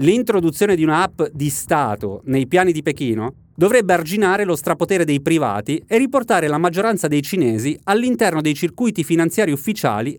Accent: native